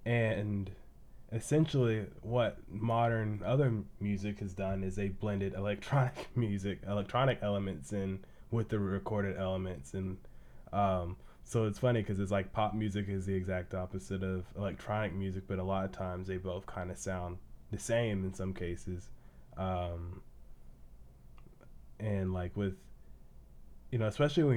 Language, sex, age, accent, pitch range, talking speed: English, male, 20-39, American, 95-105 Hz, 145 wpm